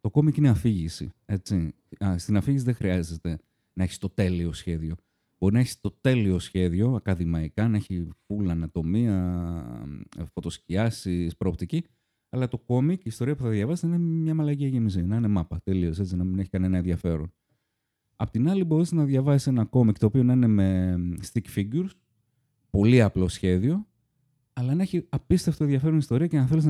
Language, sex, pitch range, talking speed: Greek, male, 90-125 Hz, 175 wpm